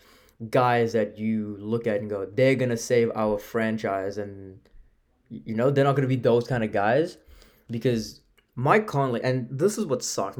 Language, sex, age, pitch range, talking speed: English, male, 20-39, 105-130 Hz, 180 wpm